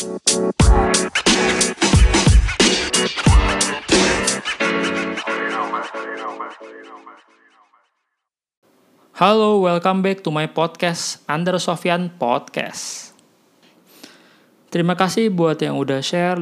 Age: 20-39